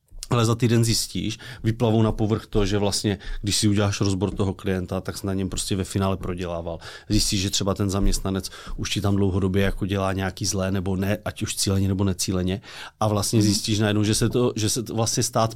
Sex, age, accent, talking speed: male, 30-49, native, 215 wpm